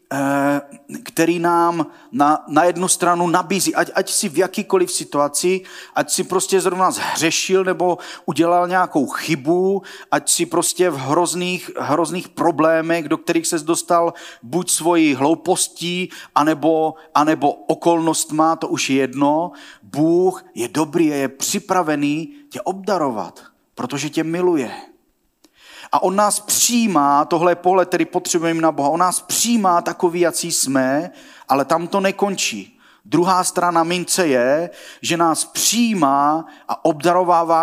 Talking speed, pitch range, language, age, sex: 135 wpm, 150-180 Hz, Czech, 40-59, male